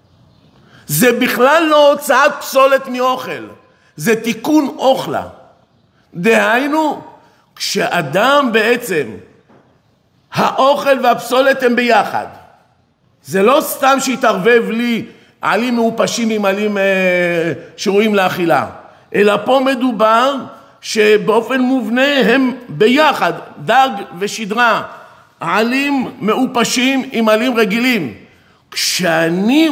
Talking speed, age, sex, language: 85 wpm, 50-69, male, Hebrew